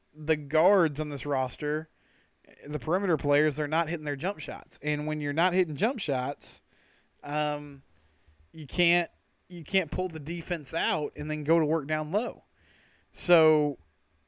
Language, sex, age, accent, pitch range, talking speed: English, male, 20-39, American, 140-165 Hz, 155 wpm